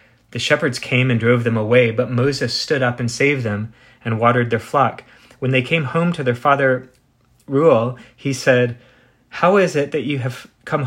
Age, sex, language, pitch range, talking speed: 30-49, male, English, 115-130 Hz, 195 wpm